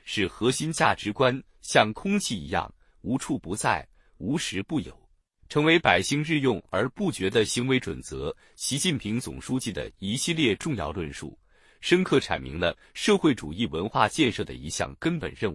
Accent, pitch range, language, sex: native, 100-145 Hz, Chinese, male